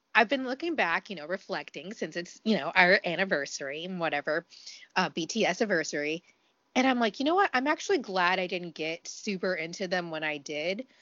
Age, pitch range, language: 30-49, 165-220 Hz, English